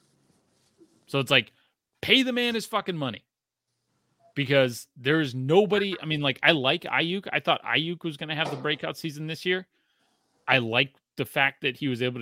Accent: American